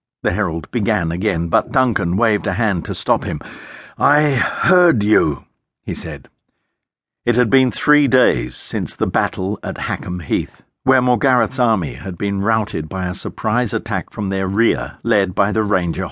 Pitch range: 100-125 Hz